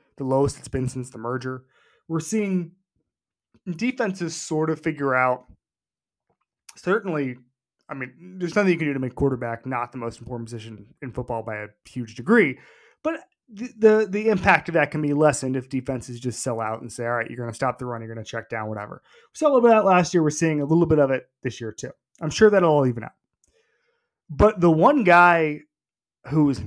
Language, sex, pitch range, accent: English, male, 125-175 Hz, American